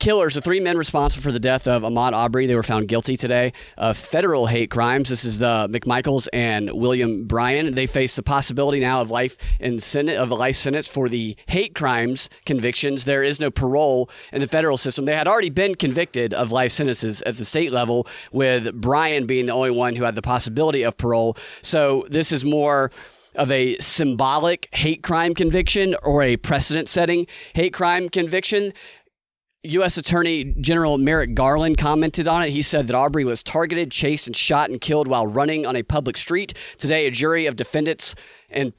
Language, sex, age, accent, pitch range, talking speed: English, male, 30-49, American, 125-155 Hz, 185 wpm